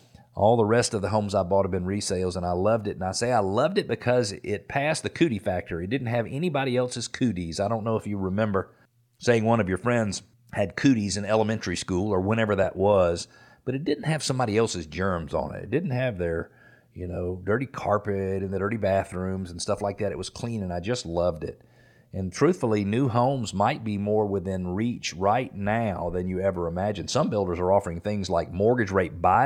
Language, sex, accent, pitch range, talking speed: English, male, American, 90-115 Hz, 225 wpm